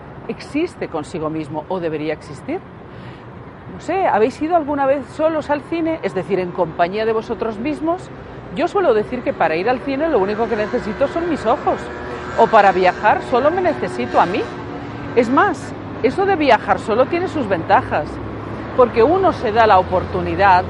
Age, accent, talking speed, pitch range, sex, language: 40-59, Spanish, 175 wpm, 175-270 Hz, female, Spanish